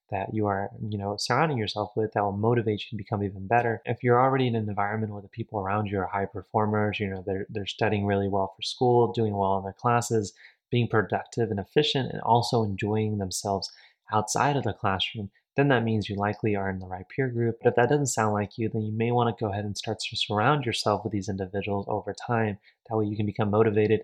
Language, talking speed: English, 240 wpm